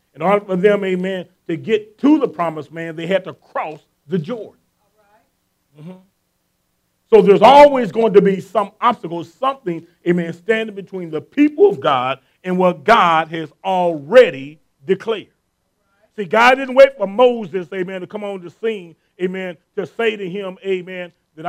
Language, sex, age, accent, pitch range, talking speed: English, male, 40-59, American, 180-230 Hz, 170 wpm